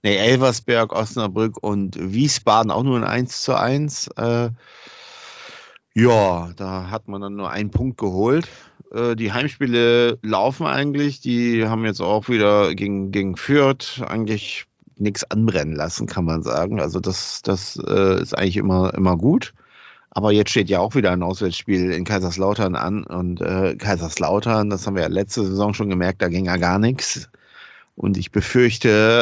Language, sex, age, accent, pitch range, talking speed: German, male, 50-69, German, 95-120 Hz, 165 wpm